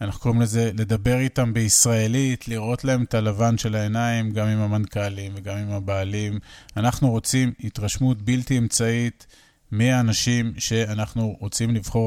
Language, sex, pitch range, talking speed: Hebrew, male, 110-135 Hz, 135 wpm